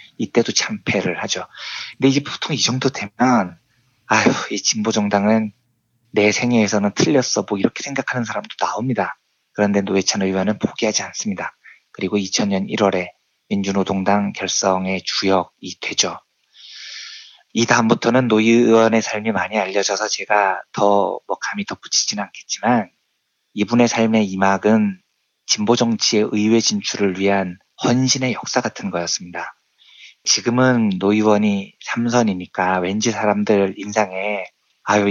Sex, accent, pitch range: male, native, 100-115 Hz